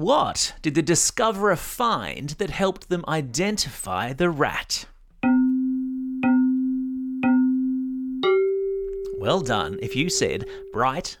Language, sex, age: English, male, 30-49